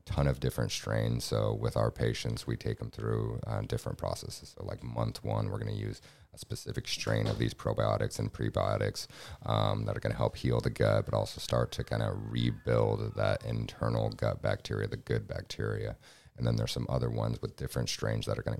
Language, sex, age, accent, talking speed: English, male, 30-49, American, 215 wpm